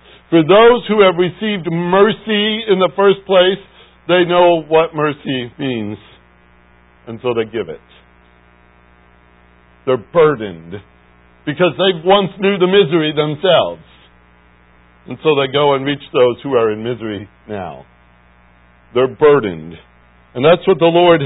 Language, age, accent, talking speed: English, 50-69, American, 135 wpm